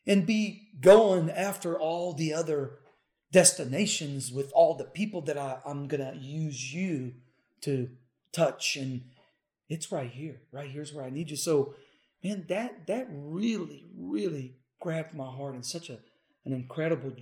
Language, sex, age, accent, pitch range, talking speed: English, male, 40-59, American, 130-160 Hz, 155 wpm